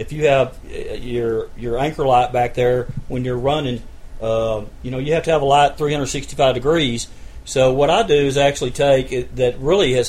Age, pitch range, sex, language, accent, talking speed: 40-59, 120-145 Hz, male, English, American, 200 wpm